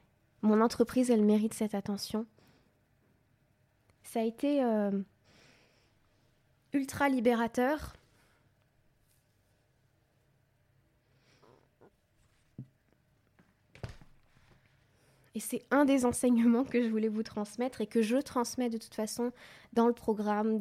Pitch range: 185-235 Hz